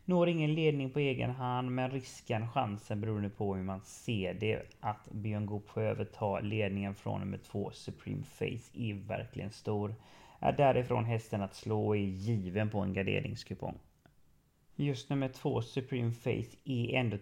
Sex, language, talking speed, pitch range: male, English, 165 wpm, 100-120 Hz